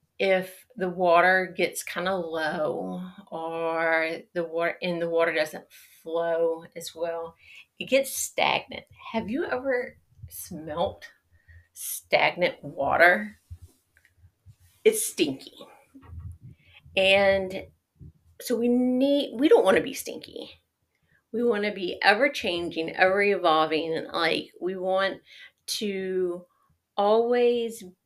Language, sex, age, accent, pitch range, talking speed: English, female, 40-59, American, 170-220 Hz, 110 wpm